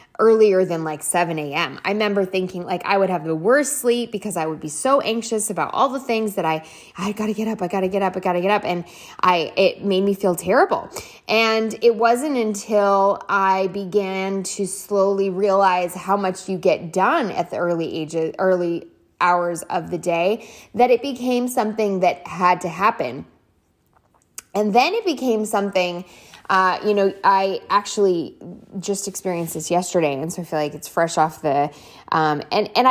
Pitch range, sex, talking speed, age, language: 175-220 Hz, female, 190 wpm, 20-39, English